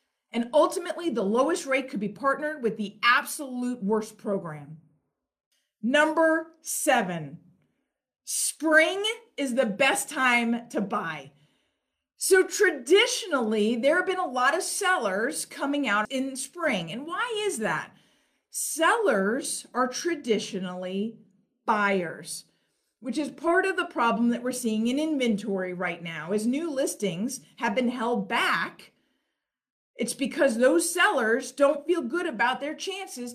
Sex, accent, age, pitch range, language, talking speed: female, American, 50-69, 210-305 Hz, English, 130 wpm